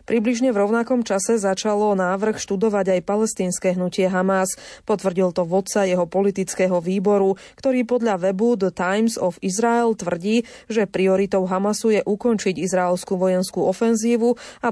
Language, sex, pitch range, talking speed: Slovak, female, 185-210 Hz, 140 wpm